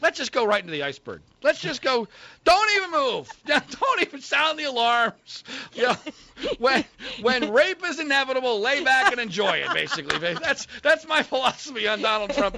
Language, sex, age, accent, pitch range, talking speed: English, male, 40-59, American, 140-235 Hz, 180 wpm